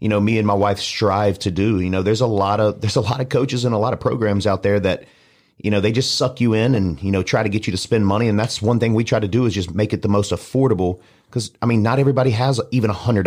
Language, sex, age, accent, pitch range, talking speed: English, male, 30-49, American, 95-120 Hz, 310 wpm